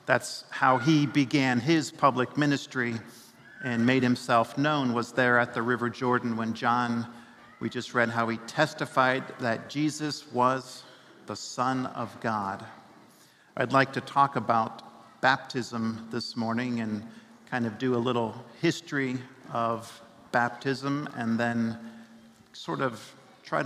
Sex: male